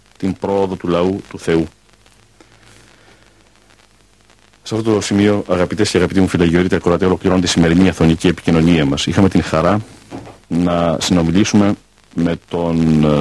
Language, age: Greek, 50-69